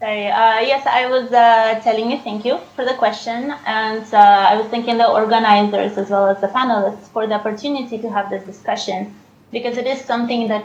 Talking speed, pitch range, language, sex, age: 205 wpm, 195-230 Hz, English, female, 20-39